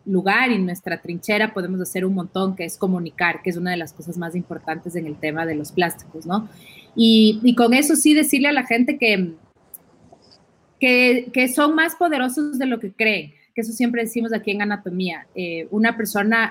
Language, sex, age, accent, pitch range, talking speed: English, female, 30-49, Mexican, 190-235 Hz, 200 wpm